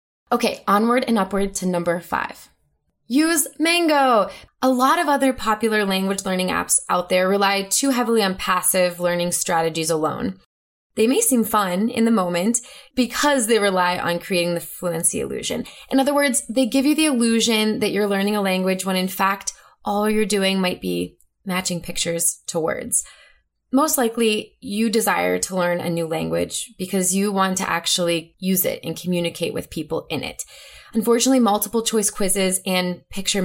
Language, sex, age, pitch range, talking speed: English, female, 20-39, 180-235 Hz, 170 wpm